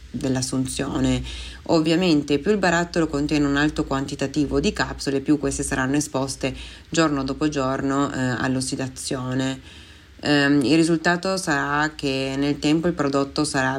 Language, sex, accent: Italian, female, native